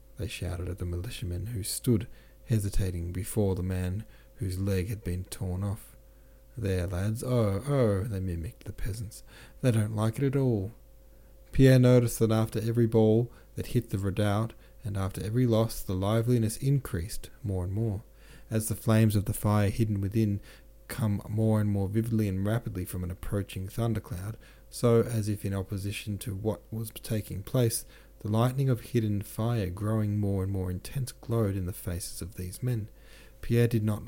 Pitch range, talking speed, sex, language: 95-115 Hz, 175 wpm, male, English